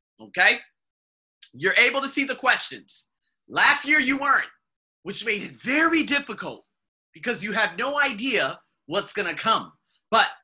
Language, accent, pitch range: English, American, 145-220 Hz